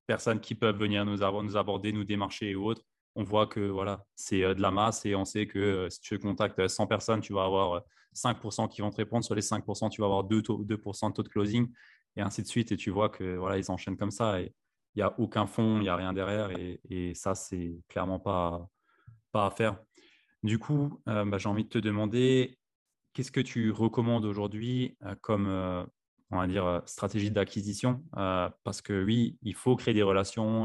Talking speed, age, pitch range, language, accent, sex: 215 wpm, 20-39, 95-110 Hz, French, French, male